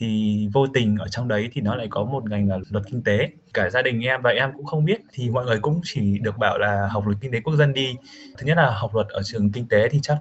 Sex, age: male, 20-39